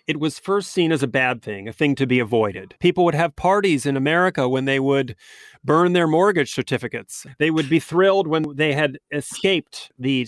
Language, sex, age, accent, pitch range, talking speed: English, male, 40-59, American, 135-175 Hz, 205 wpm